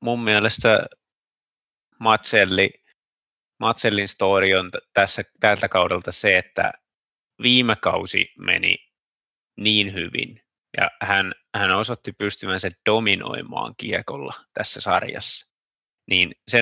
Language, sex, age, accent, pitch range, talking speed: Finnish, male, 20-39, native, 95-110 Hz, 100 wpm